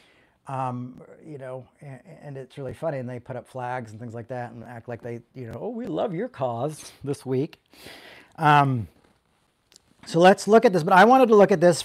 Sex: male